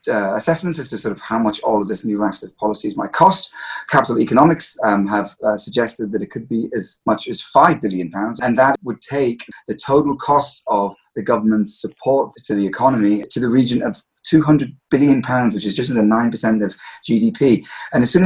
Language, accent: English, British